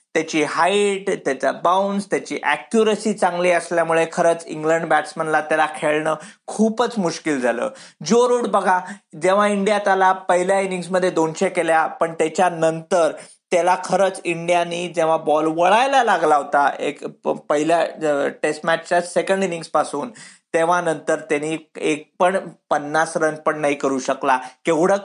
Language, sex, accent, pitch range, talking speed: Marathi, male, native, 155-185 Hz, 135 wpm